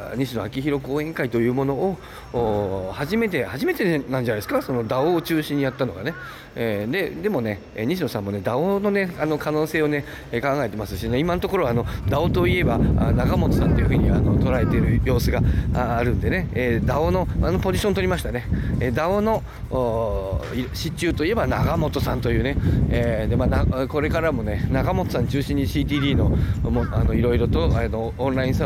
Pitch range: 105-140 Hz